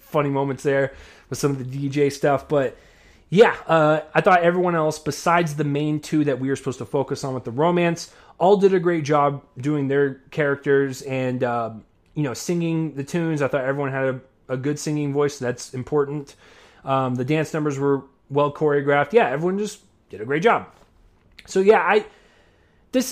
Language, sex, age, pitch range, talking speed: English, male, 30-49, 140-170 Hz, 195 wpm